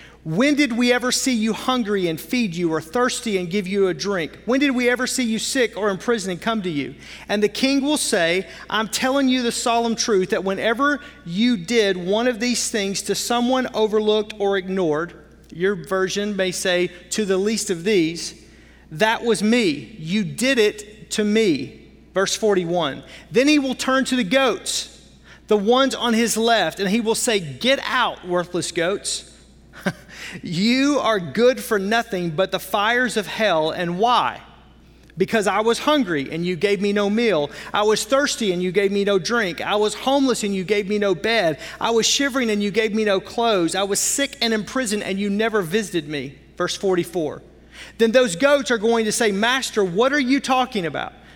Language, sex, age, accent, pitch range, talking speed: English, male, 40-59, American, 190-240 Hz, 195 wpm